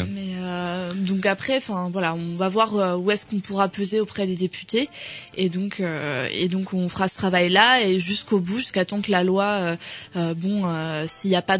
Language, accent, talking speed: French, French, 205 wpm